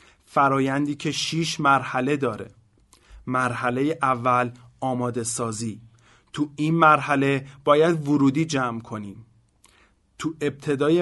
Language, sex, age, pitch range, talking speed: Persian, male, 30-49, 125-150 Hz, 100 wpm